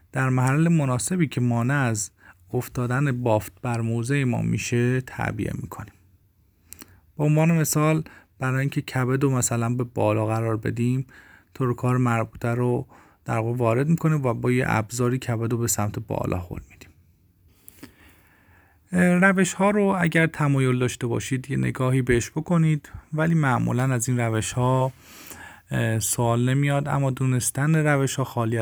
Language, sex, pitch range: Persian, male, 115-140 Hz